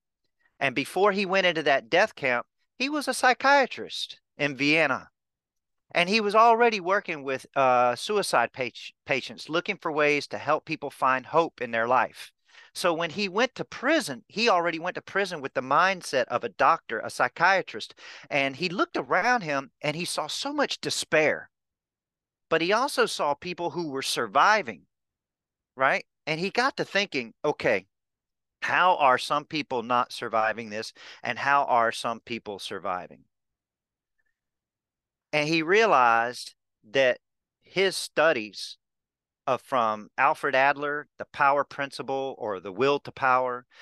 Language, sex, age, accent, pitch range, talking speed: English, male, 40-59, American, 135-180 Hz, 150 wpm